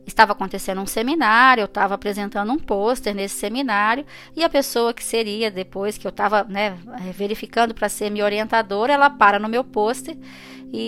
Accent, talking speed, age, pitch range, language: Brazilian, 170 wpm, 20-39, 200-235 Hz, Portuguese